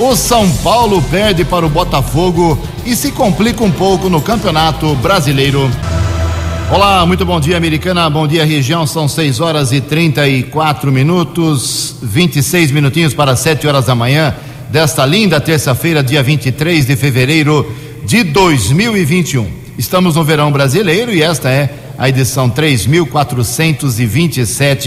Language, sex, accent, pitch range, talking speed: Portuguese, male, Brazilian, 130-155 Hz, 140 wpm